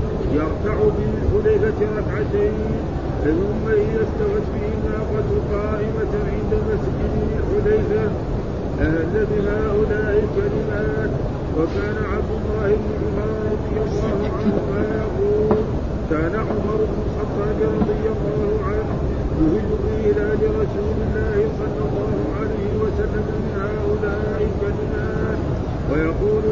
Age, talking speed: 50-69, 95 wpm